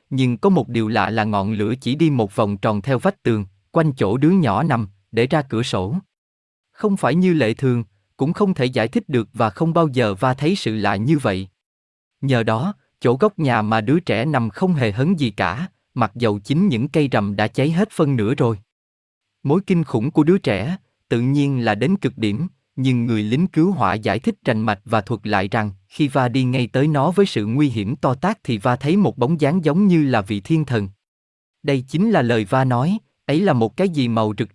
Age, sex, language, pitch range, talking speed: 20-39, male, Vietnamese, 110-160 Hz, 235 wpm